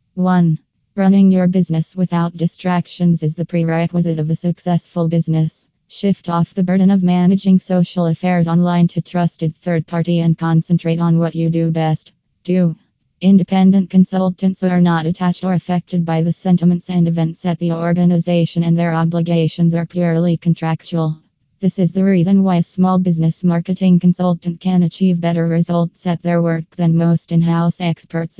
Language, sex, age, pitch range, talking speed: English, female, 20-39, 165-180 Hz, 160 wpm